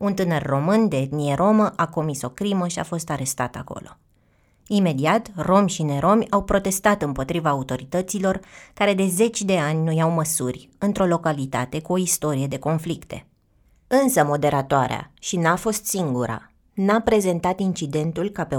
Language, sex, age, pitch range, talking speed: Romanian, female, 20-39, 145-195 Hz, 160 wpm